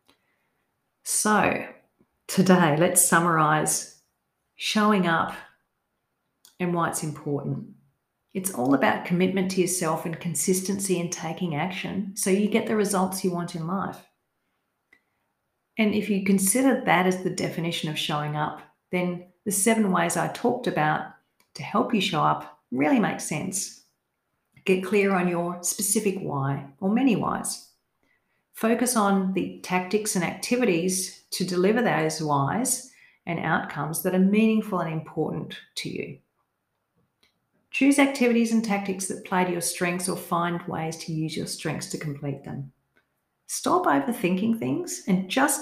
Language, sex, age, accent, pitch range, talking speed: English, female, 40-59, Australian, 160-205 Hz, 140 wpm